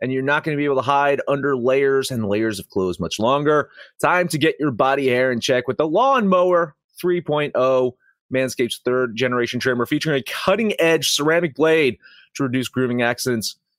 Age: 30-49